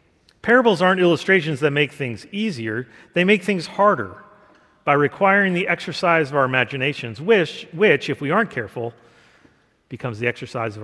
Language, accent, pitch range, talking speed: English, American, 130-180 Hz, 155 wpm